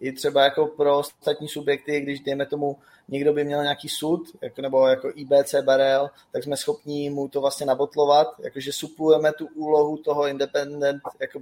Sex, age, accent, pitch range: male, 20-39, native, 145-160 Hz